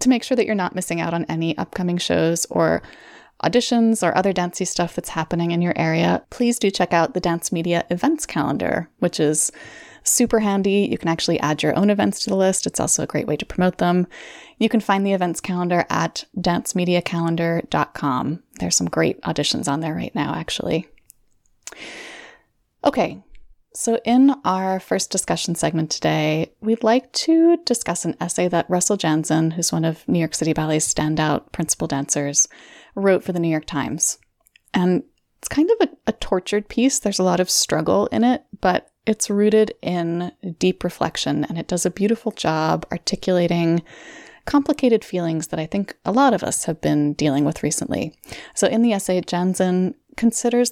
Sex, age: female, 20-39